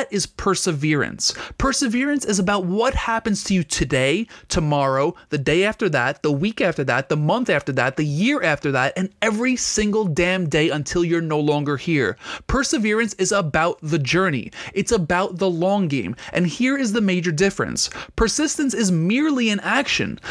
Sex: male